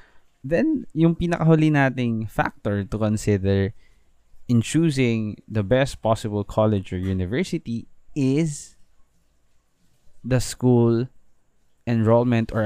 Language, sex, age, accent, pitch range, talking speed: Filipino, male, 20-39, native, 100-120 Hz, 95 wpm